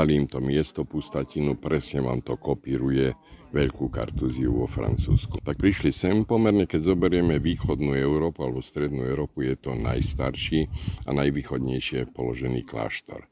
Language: Slovak